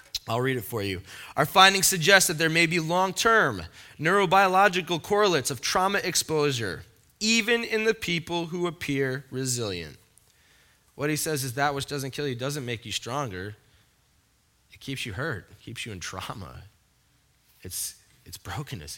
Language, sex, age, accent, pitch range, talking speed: English, male, 20-39, American, 125-175 Hz, 160 wpm